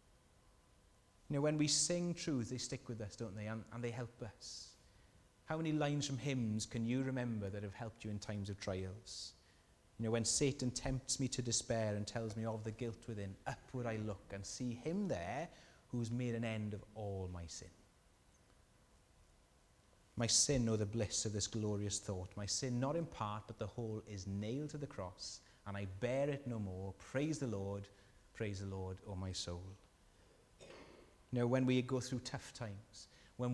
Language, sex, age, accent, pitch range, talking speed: English, male, 30-49, British, 100-130 Hz, 200 wpm